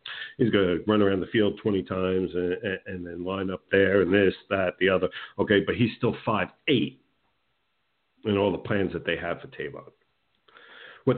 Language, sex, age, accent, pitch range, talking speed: English, male, 50-69, American, 95-130 Hz, 200 wpm